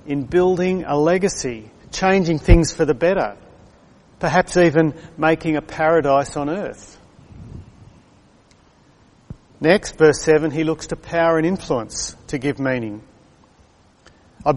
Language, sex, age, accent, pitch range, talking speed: English, male, 40-59, Australian, 135-165 Hz, 120 wpm